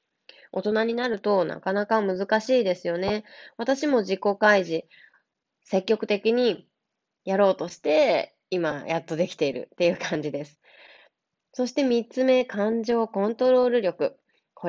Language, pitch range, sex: Japanese, 170-255 Hz, female